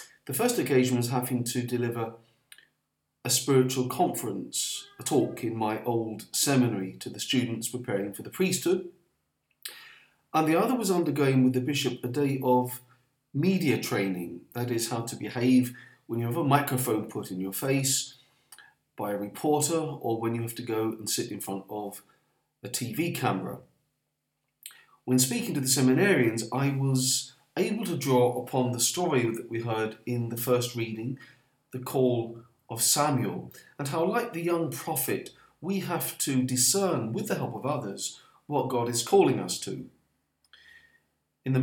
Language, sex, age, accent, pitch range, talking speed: English, male, 40-59, British, 115-140 Hz, 165 wpm